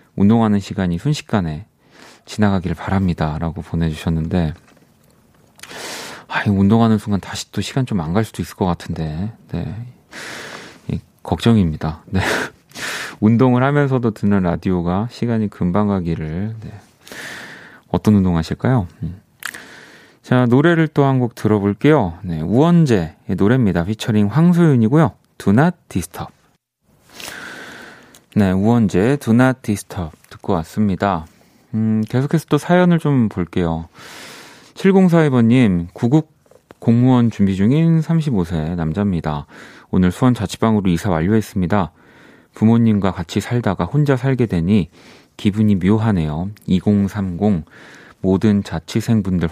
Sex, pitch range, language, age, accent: male, 90-120 Hz, Korean, 30-49, native